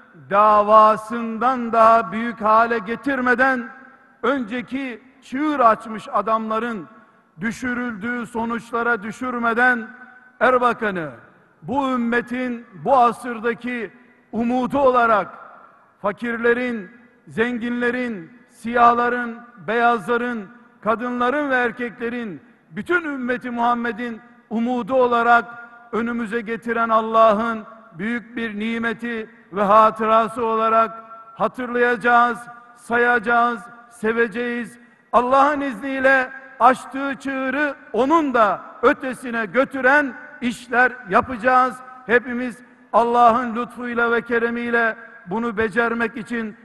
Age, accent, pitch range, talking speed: 50-69, native, 225-245 Hz, 80 wpm